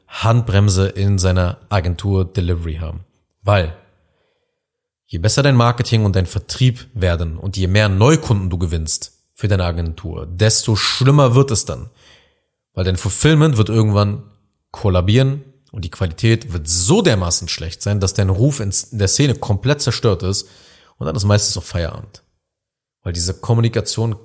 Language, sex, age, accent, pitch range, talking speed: German, male, 30-49, German, 95-115 Hz, 150 wpm